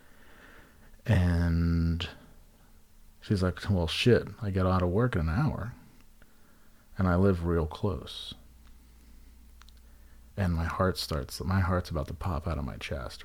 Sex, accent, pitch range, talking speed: male, American, 75-100 Hz, 140 wpm